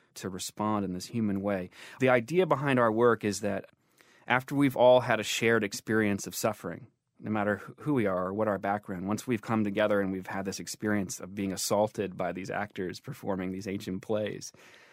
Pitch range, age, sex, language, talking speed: 105-125 Hz, 30-49, male, English, 200 wpm